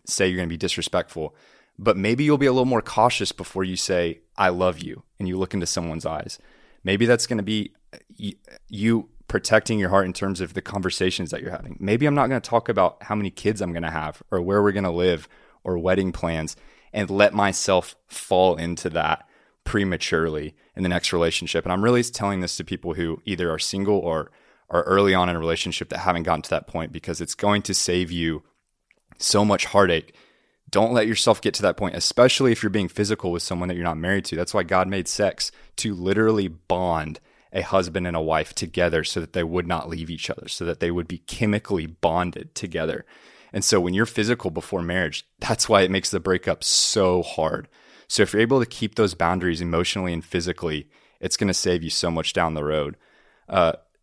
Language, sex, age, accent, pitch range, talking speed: English, male, 20-39, American, 85-100 Hz, 220 wpm